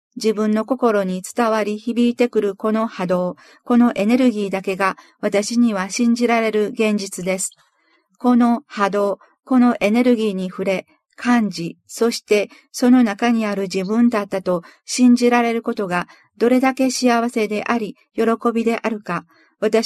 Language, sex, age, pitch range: Japanese, female, 50-69, 195-240 Hz